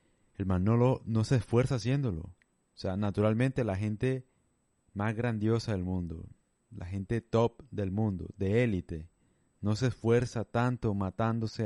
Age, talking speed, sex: 30-49, 150 wpm, male